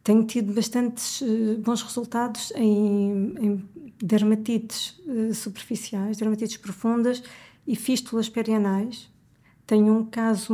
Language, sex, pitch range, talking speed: Portuguese, female, 215-245 Hz, 95 wpm